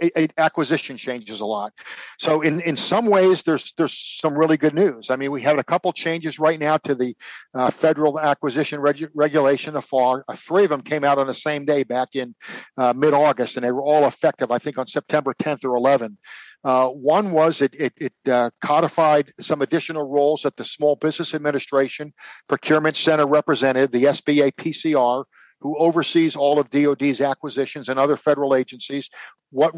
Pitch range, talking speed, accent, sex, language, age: 135-160 Hz, 185 wpm, American, male, English, 50-69